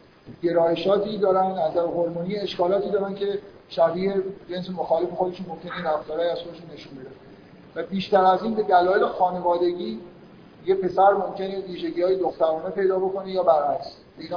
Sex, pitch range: male, 160-190 Hz